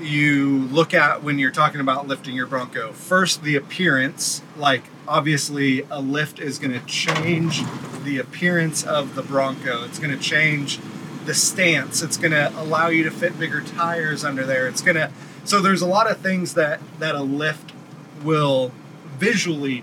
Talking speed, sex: 165 wpm, male